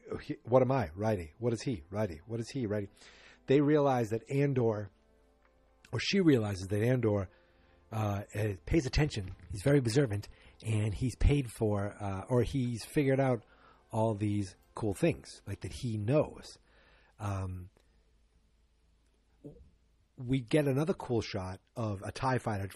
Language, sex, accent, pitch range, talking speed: English, male, American, 95-120 Hz, 140 wpm